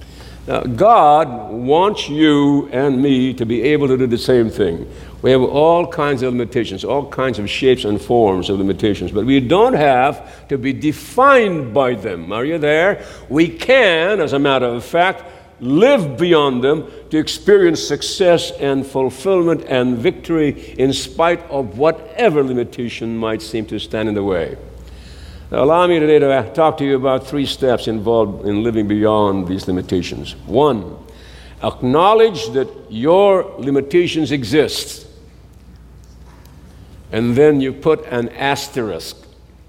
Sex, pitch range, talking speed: male, 105-145 Hz, 145 wpm